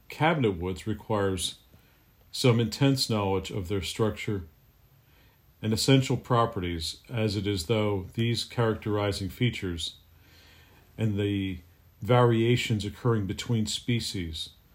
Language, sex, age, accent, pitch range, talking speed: English, male, 50-69, American, 100-120 Hz, 100 wpm